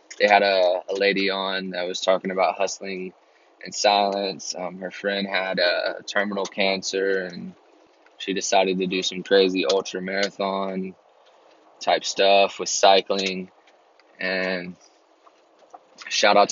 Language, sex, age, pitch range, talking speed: English, male, 20-39, 95-110 Hz, 120 wpm